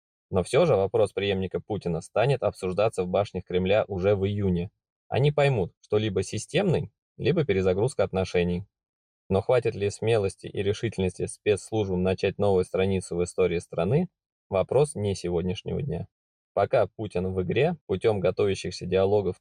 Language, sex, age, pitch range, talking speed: Russian, male, 20-39, 90-110 Hz, 140 wpm